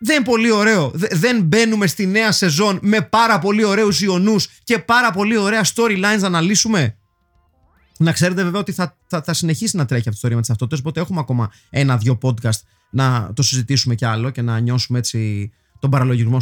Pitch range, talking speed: 120-195 Hz, 195 wpm